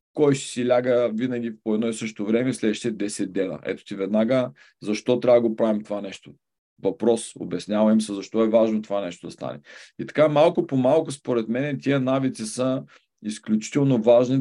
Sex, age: male, 40-59